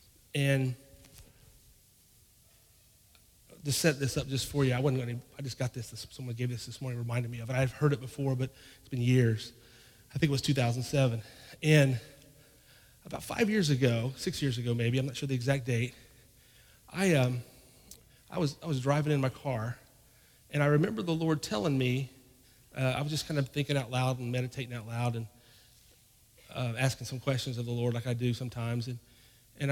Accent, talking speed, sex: American, 195 wpm, male